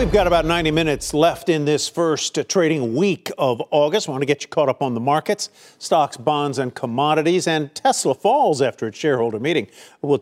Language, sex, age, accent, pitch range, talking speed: English, male, 50-69, American, 120-160 Hz, 205 wpm